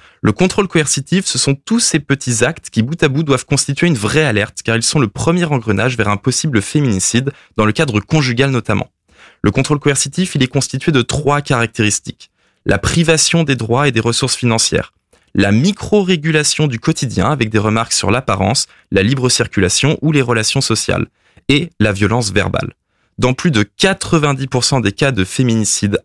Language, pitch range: French, 105-145 Hz